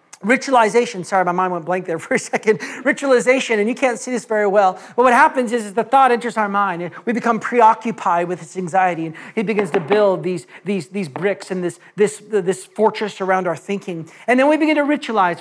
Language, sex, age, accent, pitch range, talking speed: English, male, 40-59, American, 210-275 Hz, 225 wpm